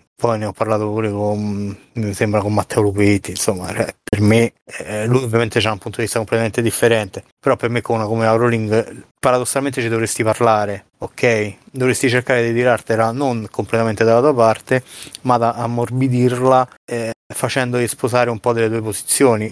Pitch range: 110-125 Hz